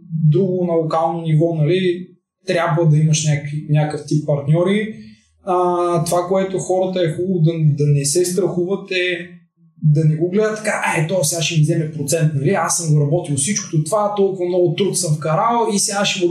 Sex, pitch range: male, 155-185 Hz